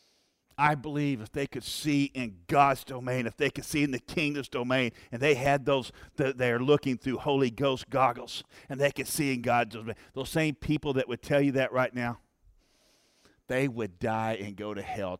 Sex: male